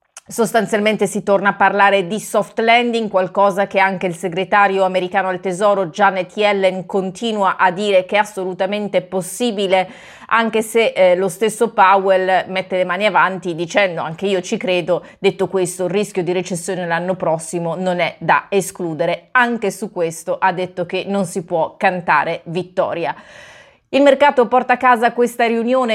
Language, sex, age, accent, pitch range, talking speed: Italian, female, 30-49, native, 185-225 Hz, 160 wpm